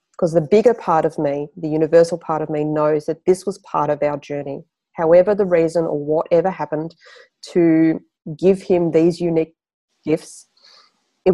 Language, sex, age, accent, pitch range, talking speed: English, female, 30-49, Australian, 160-205 Hz, 170 wpm